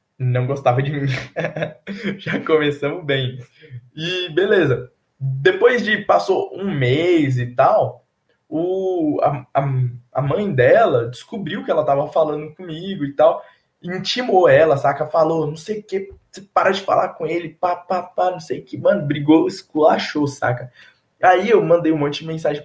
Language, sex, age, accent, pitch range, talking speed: Portuguese, male, 20-39, Brazilian, 130-175 Hz, 165 wpm